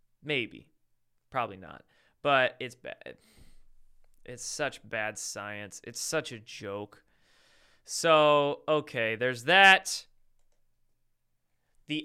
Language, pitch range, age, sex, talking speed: English, 125-150 Hz, 20-39, male, 95 wpm